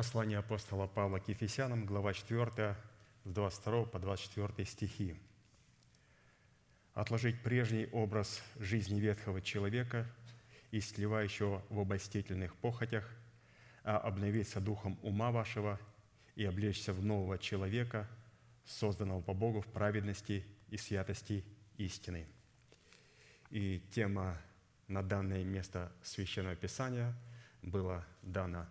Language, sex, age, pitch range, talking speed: Russian, male, 30-49, 95-115 Hz, 100 wpm